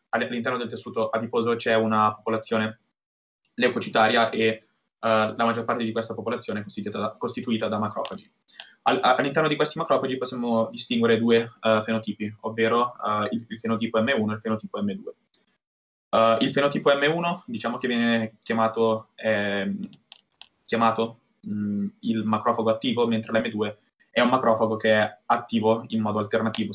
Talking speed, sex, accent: 130 wpm, male, native